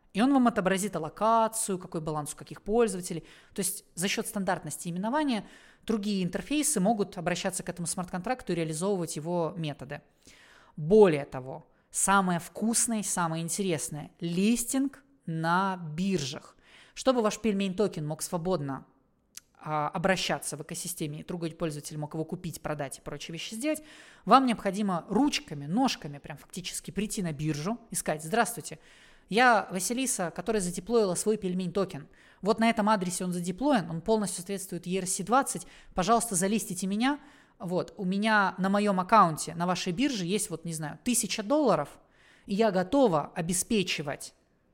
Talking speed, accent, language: 145 wpm, native, Russian